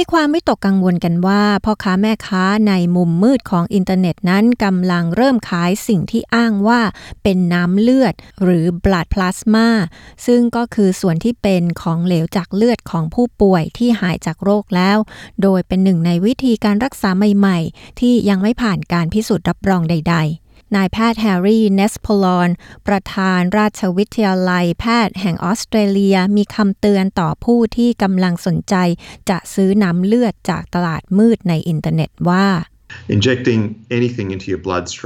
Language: Thai